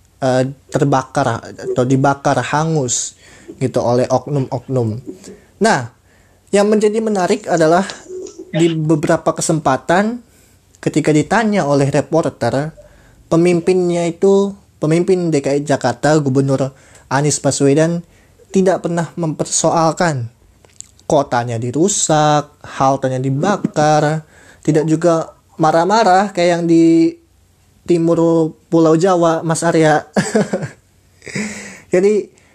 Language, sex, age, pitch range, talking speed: Indonesian, male, 20-39, 135-165 Hz, 90 wpm